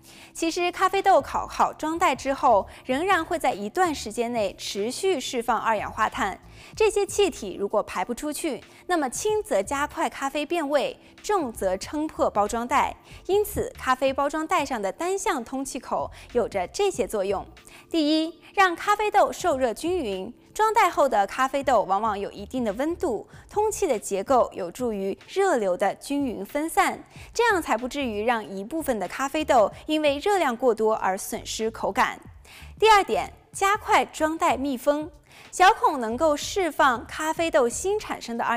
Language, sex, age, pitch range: Chinese, female, 20-39, 245-365 Hz